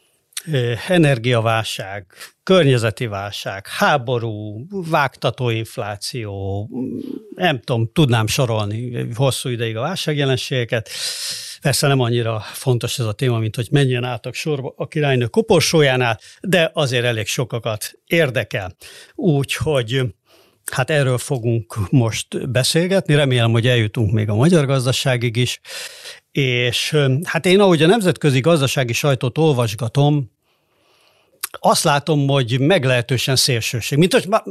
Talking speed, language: 110 wpm, Hungarian